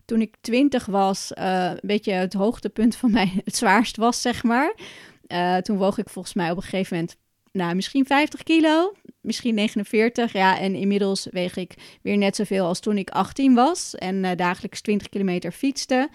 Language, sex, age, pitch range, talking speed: Dutch, female, 30-49, 190-230 Hz, 190 wpm